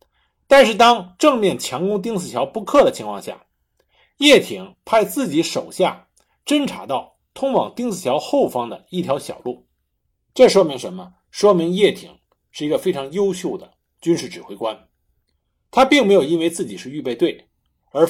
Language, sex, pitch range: Chinese, male, 175-260 Hz